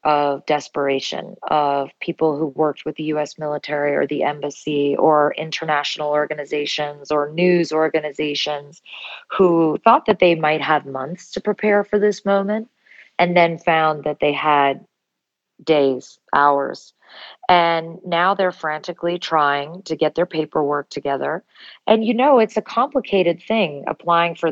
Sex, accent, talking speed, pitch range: female, American, 140 wpm, 150-185 Hz